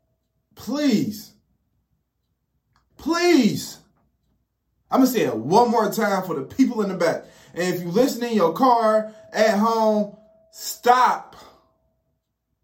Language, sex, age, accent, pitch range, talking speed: English, male, 20-39, American, 200-270 Hz, 130 wpm